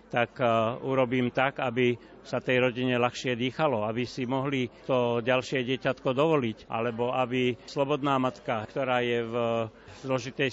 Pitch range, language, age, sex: 125-150 Hz, Slovak, 60-79, male